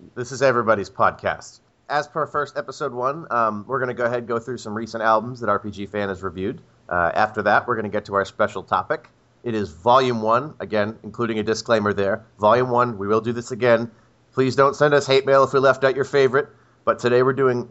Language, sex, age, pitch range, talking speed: English, male, 30-49, 105-130 Hz, 235 wpm